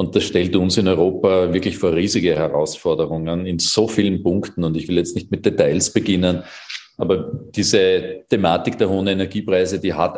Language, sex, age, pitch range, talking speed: German, male, 40-59, 90-105 Hz, 175 wpm